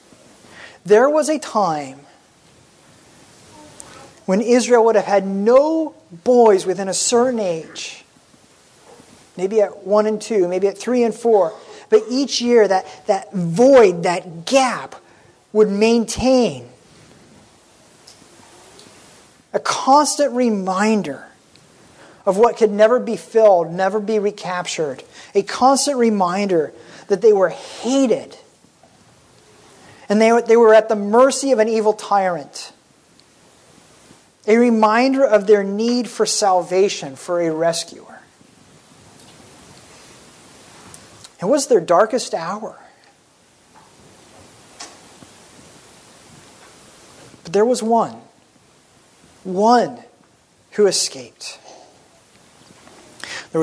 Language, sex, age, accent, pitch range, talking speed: English, male, 40-59, American, 185-240 Hz, 95 wpm